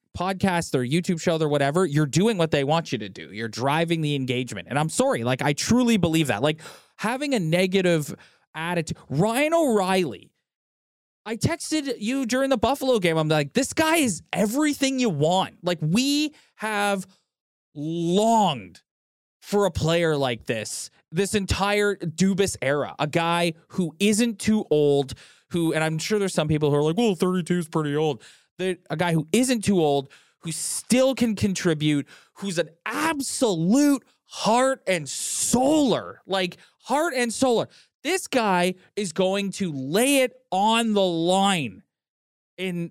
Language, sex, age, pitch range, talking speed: English, male, 20-39, 155-230 Hz, 160 wpm